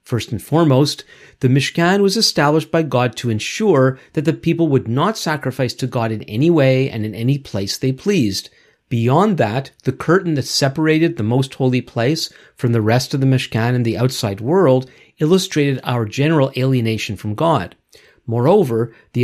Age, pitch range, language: 50-69, 125-160 Hz, English